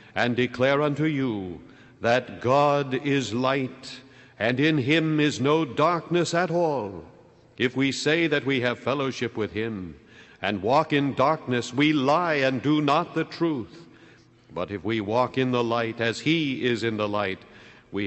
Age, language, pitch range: 60-79, English, 105-145 Hz